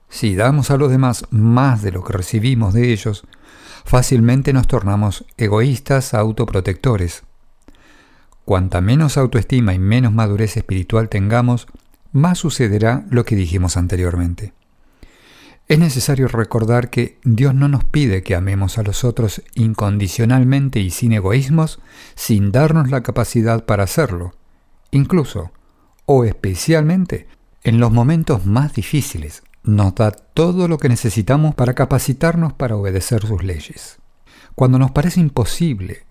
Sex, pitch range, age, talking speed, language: male, 105-135 Hz, 50-69, 130 wpm, English